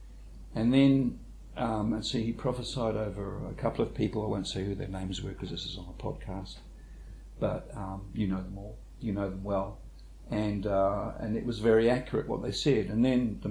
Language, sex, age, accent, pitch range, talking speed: English, male, 50-69, Australian, 95-120 Hz, 215 wpm